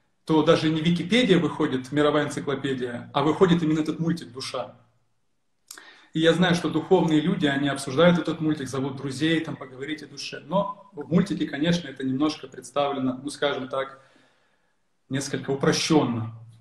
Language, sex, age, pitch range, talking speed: Russian, male, 20-39, 130-160 Hz, 150 wpm